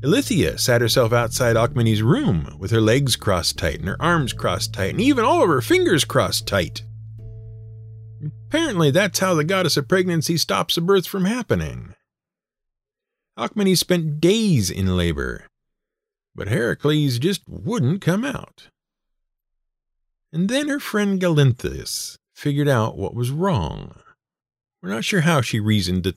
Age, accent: 50-69, American